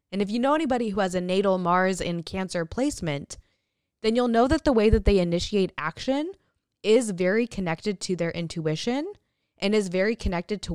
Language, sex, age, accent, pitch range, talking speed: English, female, 20-39, American, 170-220 Hz, 190 wpm